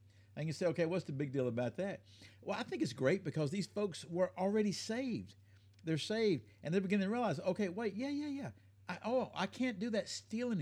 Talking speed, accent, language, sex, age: 225 wpm, American, English, male, 50-69